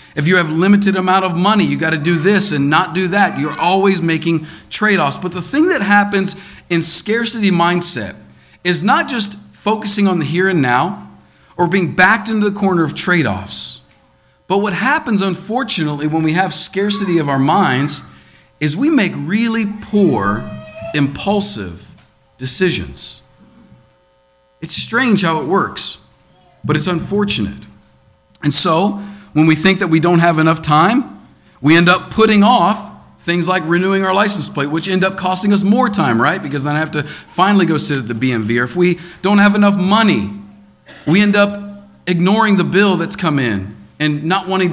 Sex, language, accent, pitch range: male, English, American, 150-200 Hz